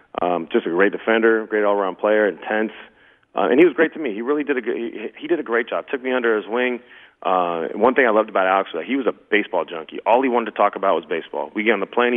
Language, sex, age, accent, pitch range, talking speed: English, male, 30-49, American, 95-120 Hz, 300 wpm